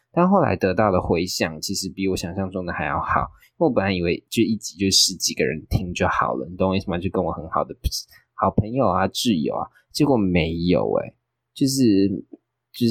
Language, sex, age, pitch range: Chinese, male, 20-39, 90-110 Hz